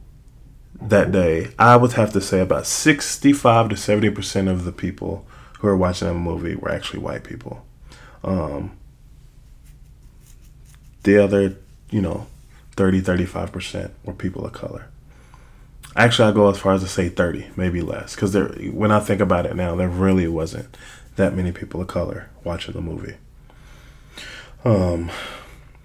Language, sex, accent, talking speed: English, male, American, 150 wpm